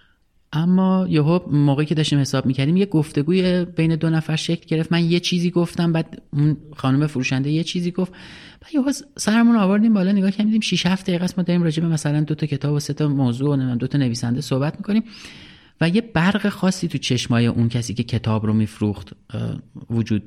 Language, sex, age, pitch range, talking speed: Persian, male, 30-49, 115-170 Hz, 200 wpm